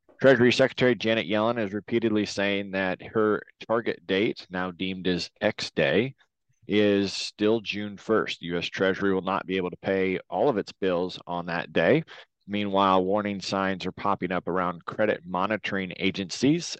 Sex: male